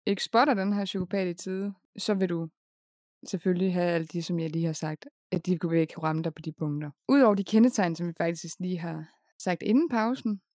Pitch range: 170-210 Hz